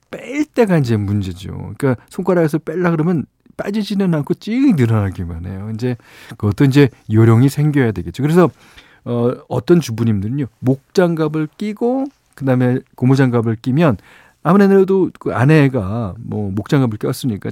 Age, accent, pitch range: 40-59, native, 100-150 Hz